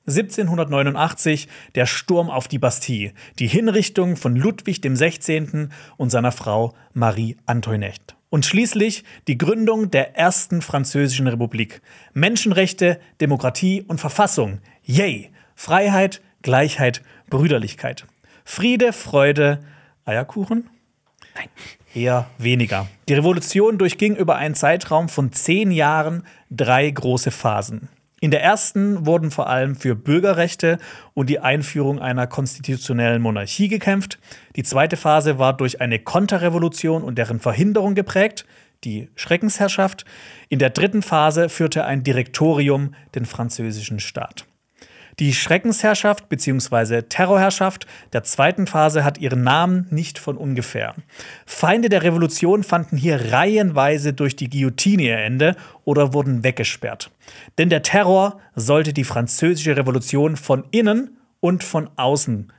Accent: German